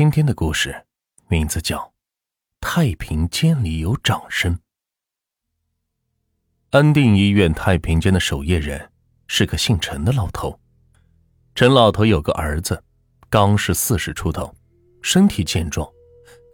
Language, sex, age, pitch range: Chinese, male, 20-39, 85-120 Hz